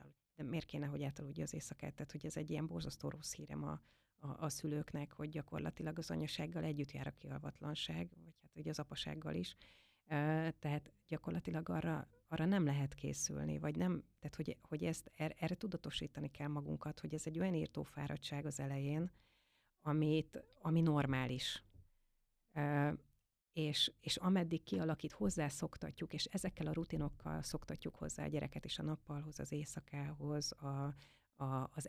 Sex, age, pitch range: female, 30-49, 140-155 Hz